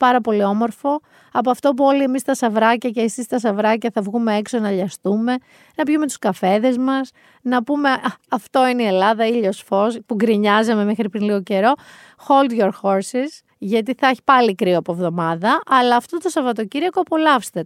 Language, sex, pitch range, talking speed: Greek, female, 205-290 Hz, 185 wpm